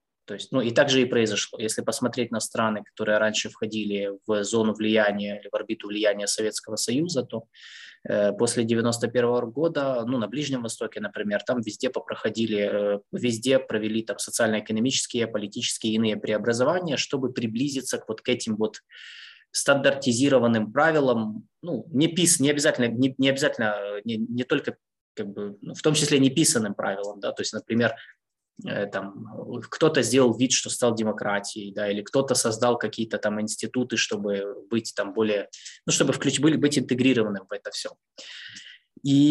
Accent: native